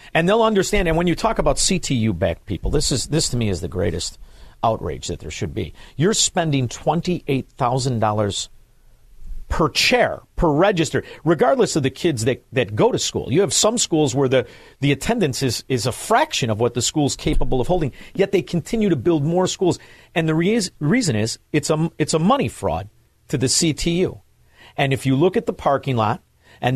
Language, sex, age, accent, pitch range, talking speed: English, male, 50-69, American, 120-175 Hz, 195 wpm